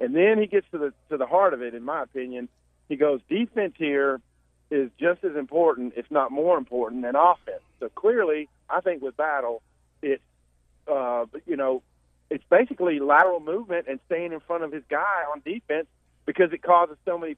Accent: American